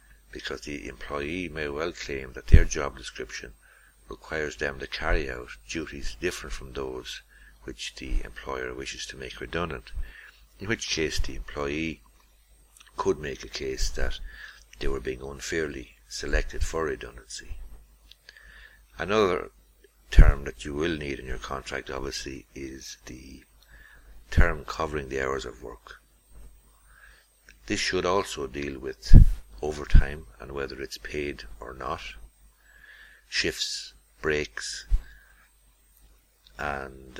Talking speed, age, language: 125 wpm, 60-79, English